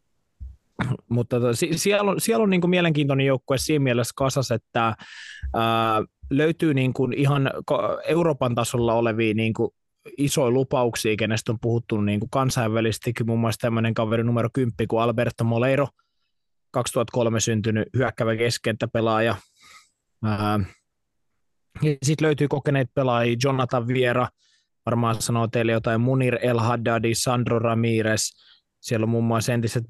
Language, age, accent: Finnish, 20-39, native